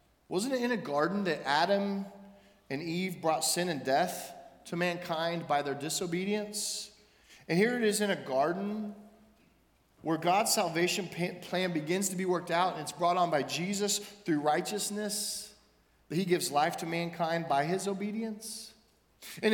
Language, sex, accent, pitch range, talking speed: English, male, American, 150-205 Hz, 160 wpm